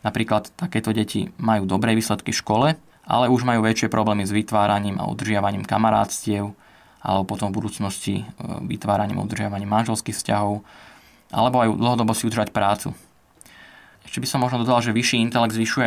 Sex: male